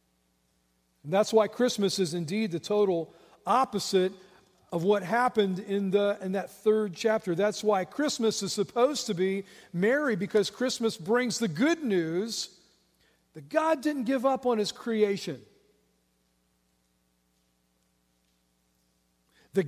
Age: 50-69